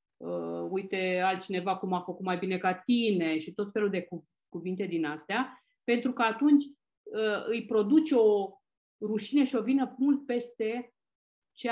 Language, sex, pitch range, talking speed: Romanian, female, 195-290 Hz, 150 wpm